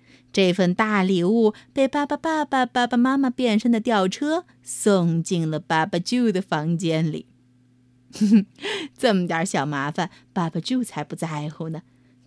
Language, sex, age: Chinese, female, 30-49